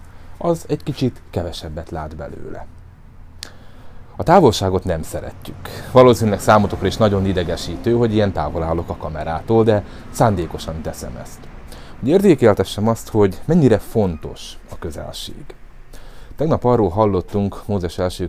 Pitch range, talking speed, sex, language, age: 80-100 Hz, 125 wpm, male, Hungarian, 30-49